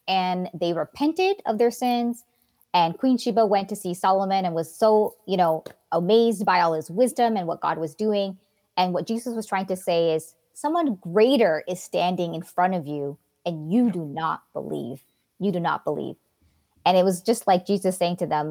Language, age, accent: English, 20-39, American